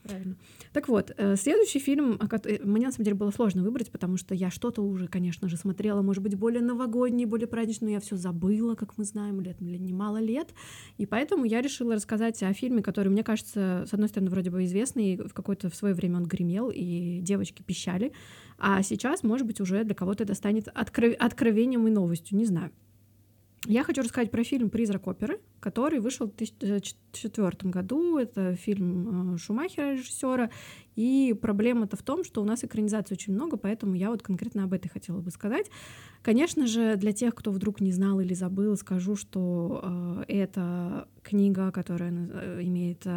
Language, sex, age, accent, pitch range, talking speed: Russian, female, 20-39, native, 185-225 Hz, 180 wpm